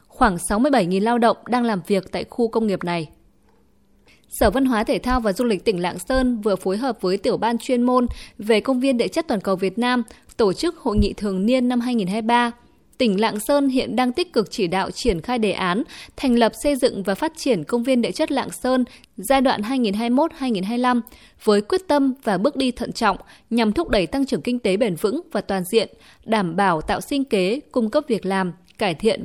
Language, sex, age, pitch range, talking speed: Vietnamese, female, 20-39, 205-255 Hz, 220 wpm